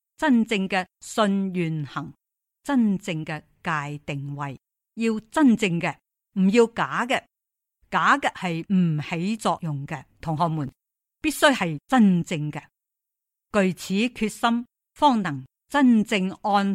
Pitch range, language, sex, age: 170-225 Hz, Chinese, female, 50-69